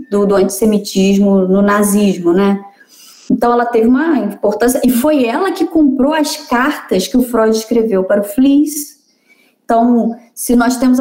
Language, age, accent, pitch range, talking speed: Portuguese, 20-39, Brazilian, 205-255 Hz, 160 wpm